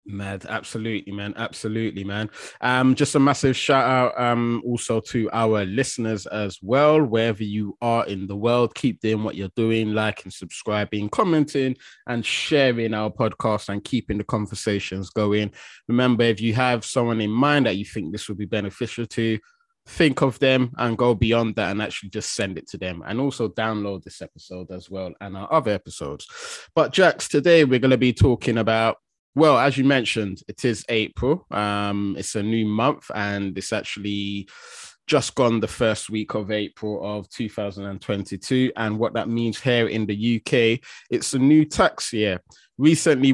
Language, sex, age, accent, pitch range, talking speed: English, male, 20-39, British, 105-130 Hz, 175 wpm